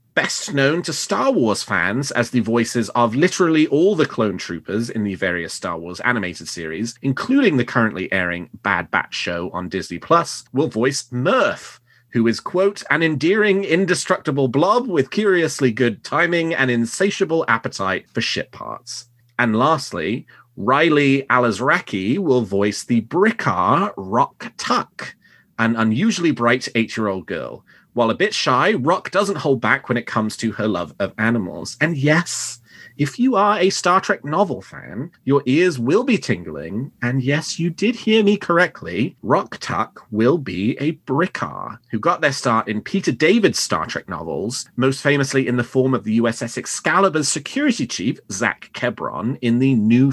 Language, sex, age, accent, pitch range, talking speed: English, male, 30-49, British, 115-165 Hz, 165 wpm